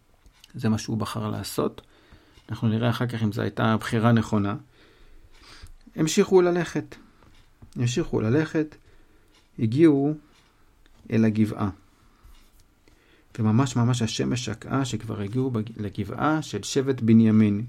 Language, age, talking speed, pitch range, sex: Hebrew, 50-69, 110 wpm, 110-140 Hz, male